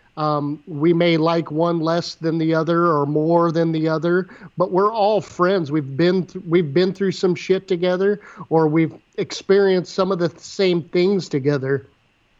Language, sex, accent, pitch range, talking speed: English, male, American, 165-195 Hz, 170 wpm